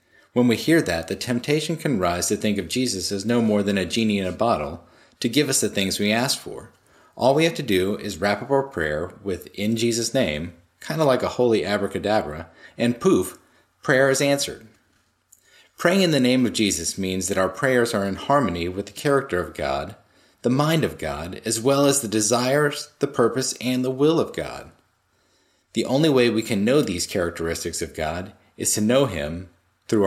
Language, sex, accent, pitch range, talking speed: English, male, American, 95-125 Hz, 205 wpm